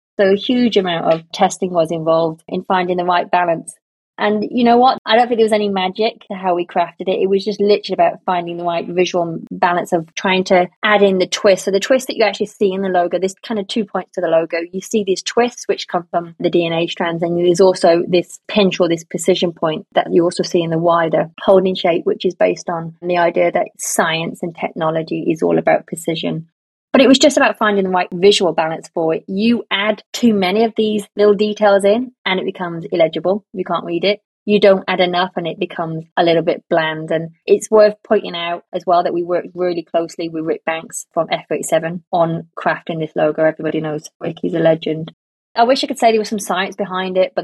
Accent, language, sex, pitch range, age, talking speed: British, English, female, 170-205 Hz, 20-39, 235 wpm